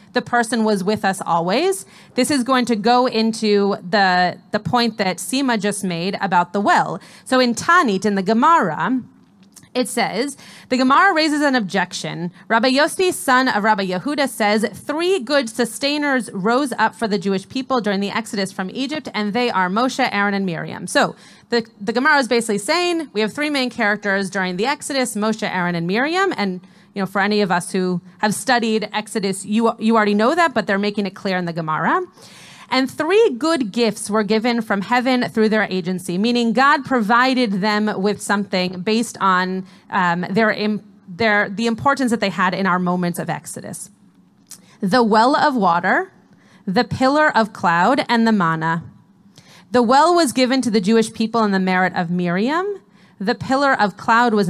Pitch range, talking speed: 195-255 Hz, 185 wpm